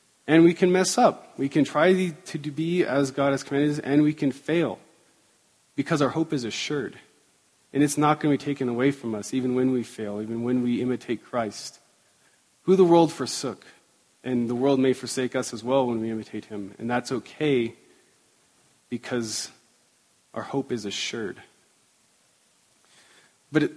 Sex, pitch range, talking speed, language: male, 120-150 Hz, 170 wpm, English